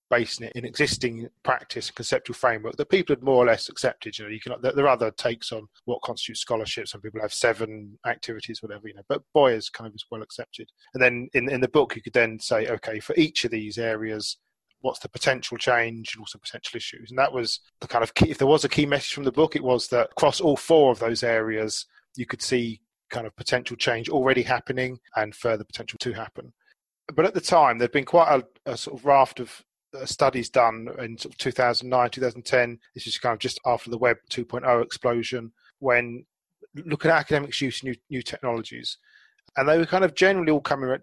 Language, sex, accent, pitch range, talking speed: English, male, British, 115-130 Hz, 220 wpm